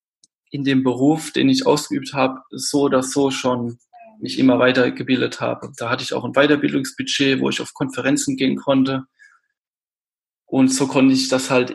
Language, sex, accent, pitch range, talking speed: German, male, German, 130-160 Hz, 170 wpm